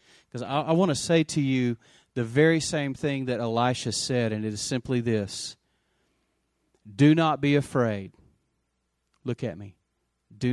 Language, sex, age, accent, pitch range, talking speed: English, male, 40-59, American, 100-130 Hz, 150 wpm